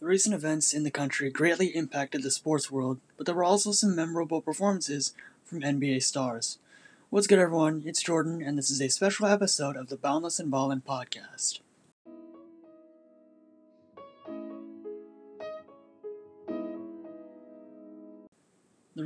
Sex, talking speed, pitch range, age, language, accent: male, 125 wpm, 140-170 Hz, 20-39, English, American